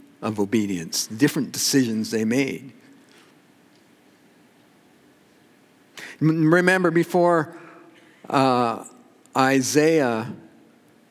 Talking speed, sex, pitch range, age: 55 wpm, male, 130-165 Hz, 60-79